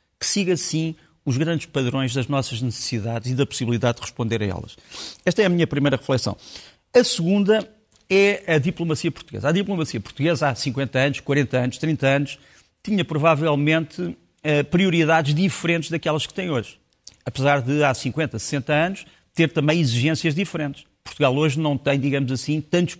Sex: male